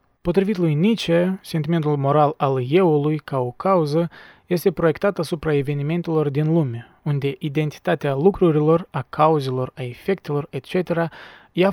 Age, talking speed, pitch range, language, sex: 20-39, 130 wpm, 135-170 Hz, Romanian, male